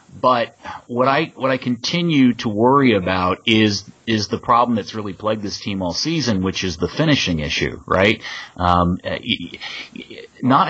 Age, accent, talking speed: 30-49, American, 155 wpm